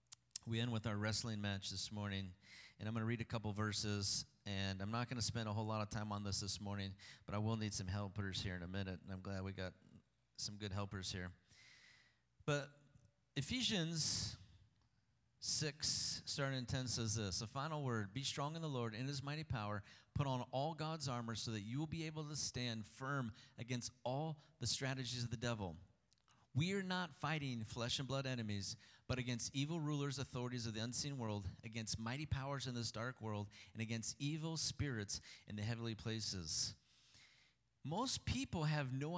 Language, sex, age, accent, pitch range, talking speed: English, male, 30-49, American, 105-135 Hz, 195 wpm